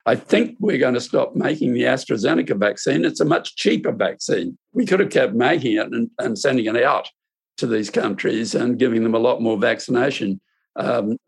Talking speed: 190 wpm